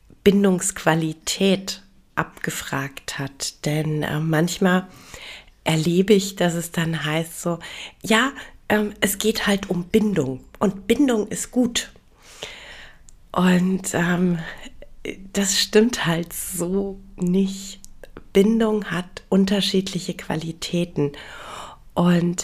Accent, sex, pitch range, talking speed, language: German, female, 160-195 Hz, 95 wpm, German